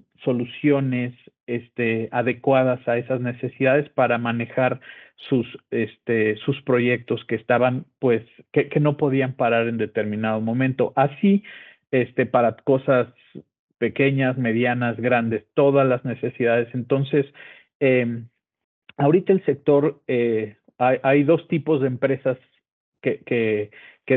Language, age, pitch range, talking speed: English, 50-69, 120-140 Hz, 120 wpm